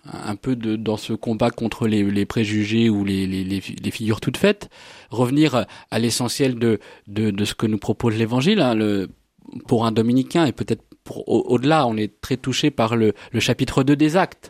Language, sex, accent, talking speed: French, male, French, 205 wpm